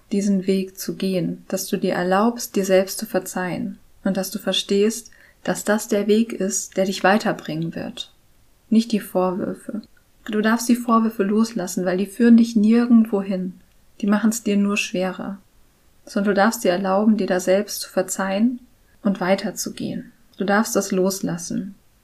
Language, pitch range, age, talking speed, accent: German, 190-220 Hz, 20-39, 165 wpm, German